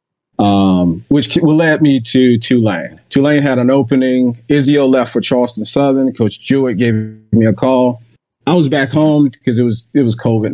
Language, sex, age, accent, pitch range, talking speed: English, male, 30-49, American, 105-130 Hz, 175 wpm